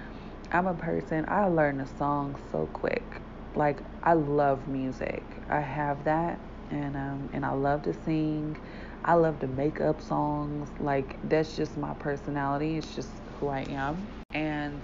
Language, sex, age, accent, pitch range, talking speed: English, female, 20-39, American, 135-150 Hz, 160 wpm